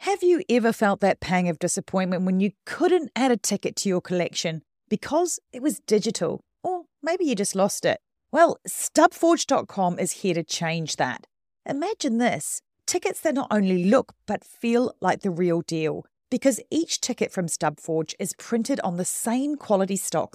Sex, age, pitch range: female, 40-59, 175-265 Hz